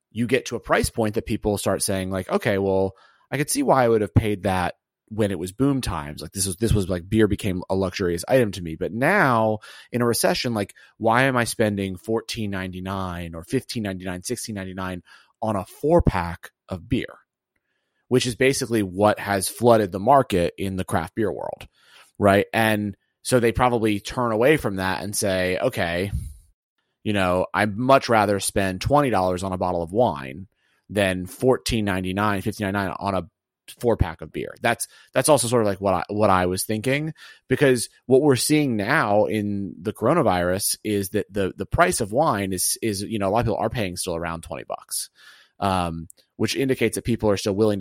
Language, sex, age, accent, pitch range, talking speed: English, male, 30-49, American, 95-115 Hz, 200 wpm